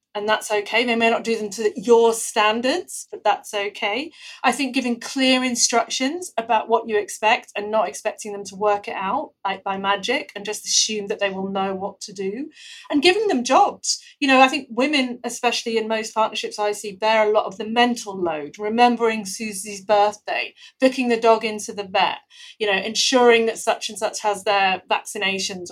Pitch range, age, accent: 210-255 Hz, 30-49, British